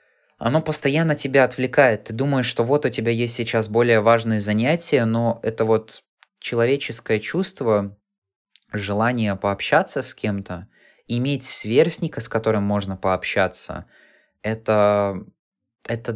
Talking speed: 120 wpm